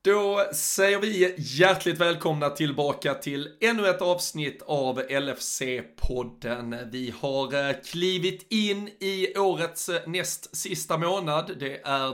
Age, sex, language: 30-49, male, Swedish